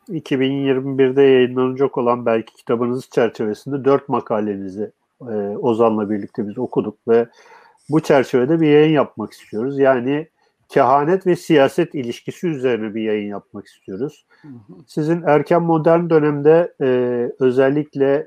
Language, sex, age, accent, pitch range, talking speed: Turkish, male, 50-69, native, 125-155 Hz, 120 wpm